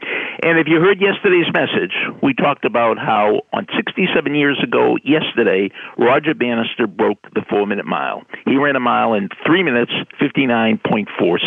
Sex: male